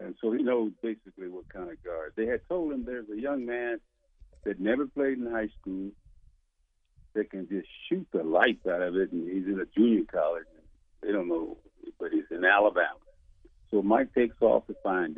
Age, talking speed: 60-79, 200 wpm